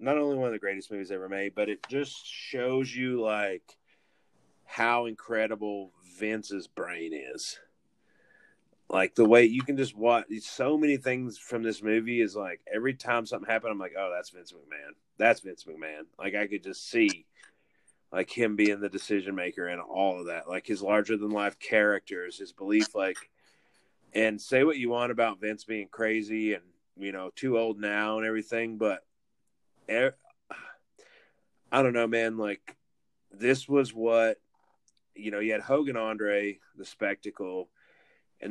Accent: American